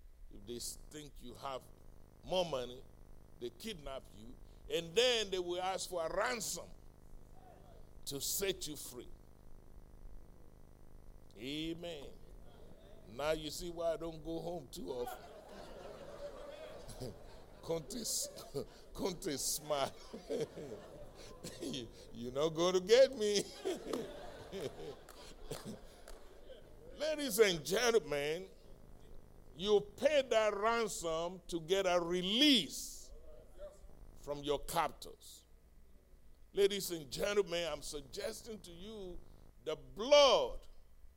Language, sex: English, male